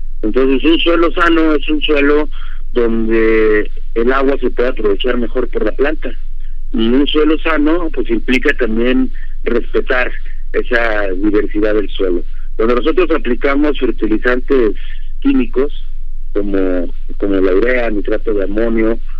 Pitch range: 110-145 Hz